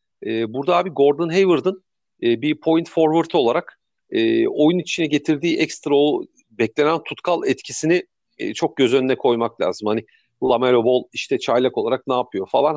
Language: Turkish